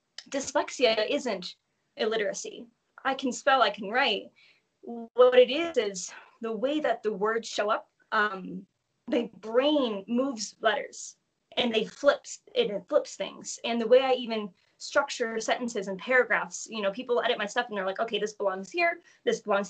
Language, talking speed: English, 170 wpm